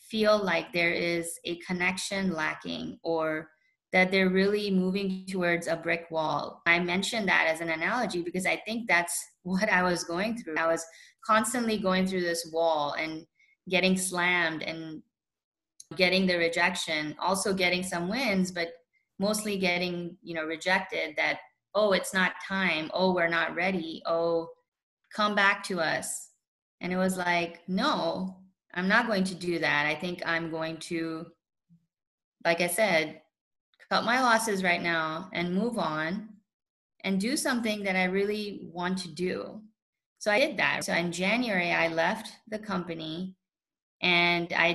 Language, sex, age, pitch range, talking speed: English, female, 20-39, 165-200 Hz, 160 wpm